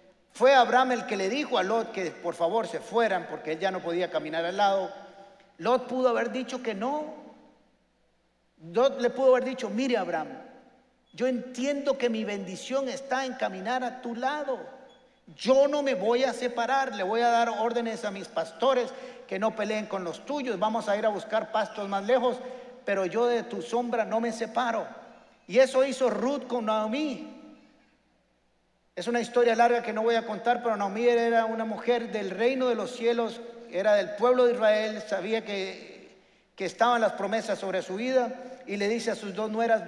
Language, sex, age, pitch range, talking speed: Spanish, male, 50-69, 215-250 Hz, 190 wpm